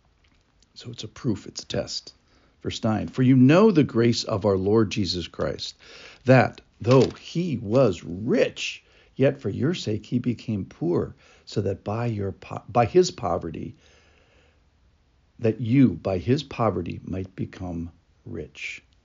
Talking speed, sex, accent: 140 wpm, male, American